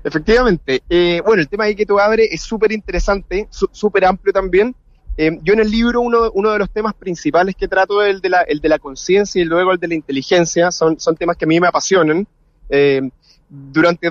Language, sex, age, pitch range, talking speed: Spanish, male, 20-39, 165-200 Hz, 215 wpm